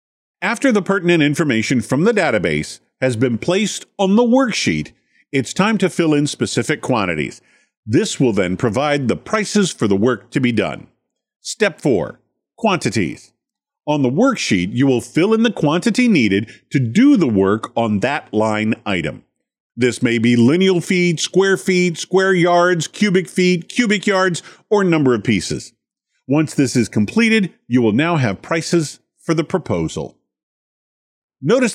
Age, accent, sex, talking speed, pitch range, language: 50-69, American, male, 155 wpm, 120-190 Hz, English